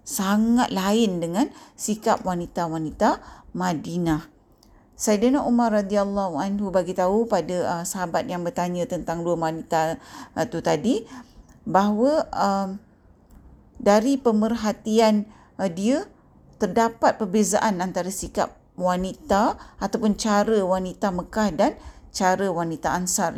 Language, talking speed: Malay, 100 wpm